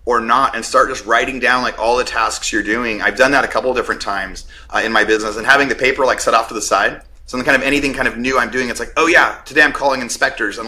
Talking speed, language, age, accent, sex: 305 wpm, English, 30-49, American, male